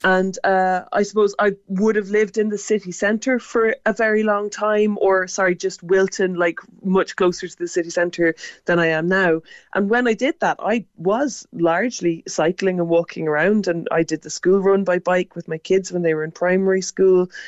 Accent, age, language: Irish, 20-39, English